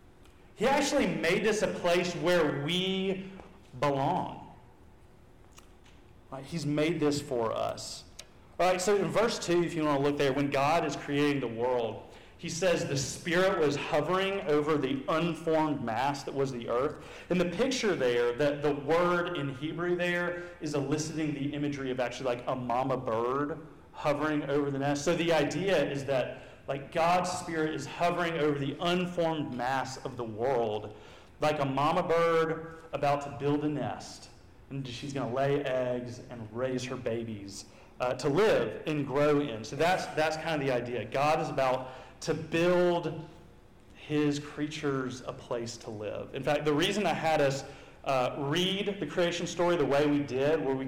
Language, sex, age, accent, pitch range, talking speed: English, male, 40-59, American, 135-170 Hz, 175 wpm